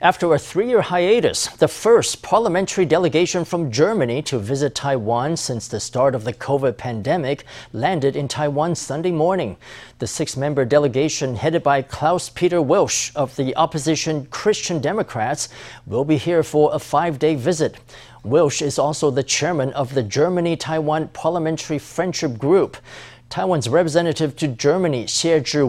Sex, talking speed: male, 140 wpm